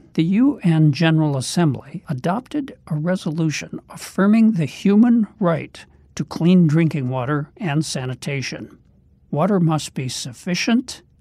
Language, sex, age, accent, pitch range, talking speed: English, male, 60-79, American, 145-190 Hz, 110 wpm